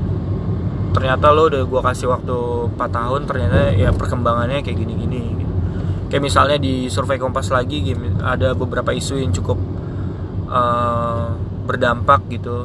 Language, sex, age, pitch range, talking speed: Indonesian, male, 20-39, 95-130 Hz, 130 wpm